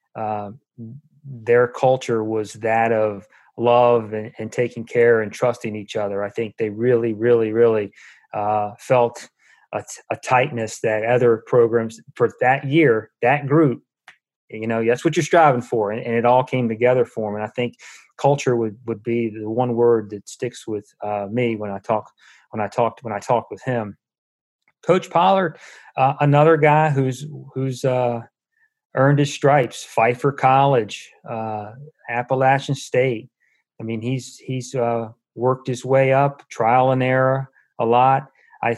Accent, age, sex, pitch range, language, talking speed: American, 30-49, male, 115-135 Hz, English, 165 wpm